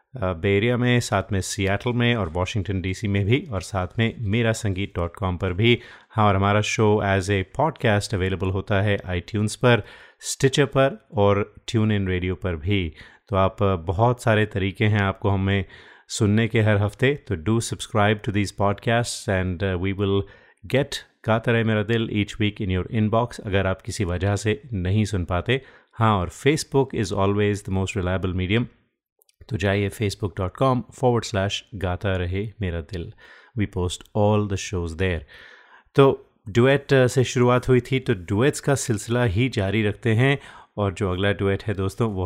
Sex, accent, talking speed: male, native, 180 wpm